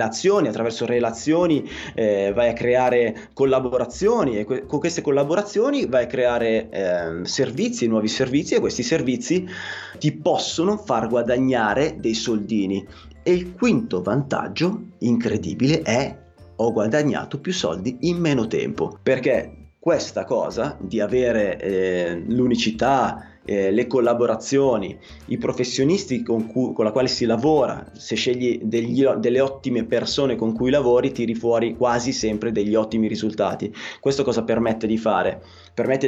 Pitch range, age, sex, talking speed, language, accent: 110-135 Hz, 30-49, male, 130 wpm, Italian, native